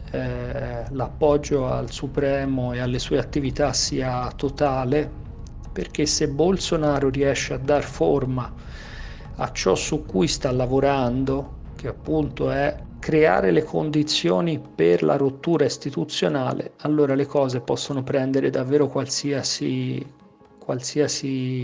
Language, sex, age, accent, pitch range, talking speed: Italian, male, 50-69, native, 130-150 Hz, 110 wpm